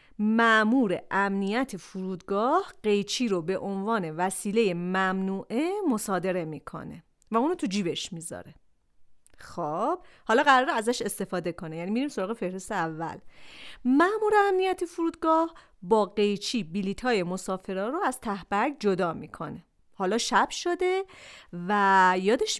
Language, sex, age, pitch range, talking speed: Persian, female, 40-59, 190-295 Hz, 120 wpm